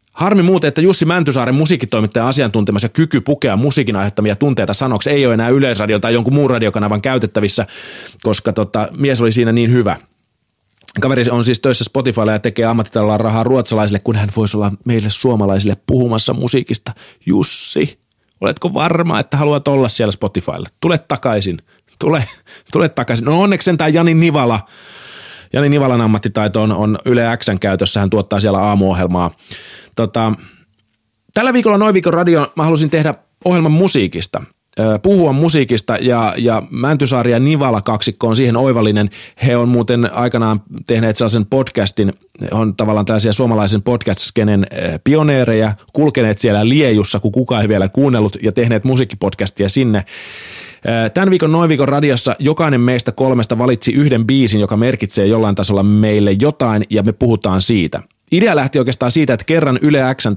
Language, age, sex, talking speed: Finnish, 30-49, male, 150 wpm